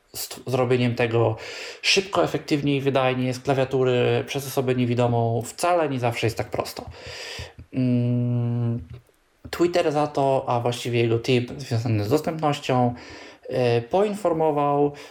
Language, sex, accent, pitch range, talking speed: Polish, male, native, 120-145 Hz, 110 wpm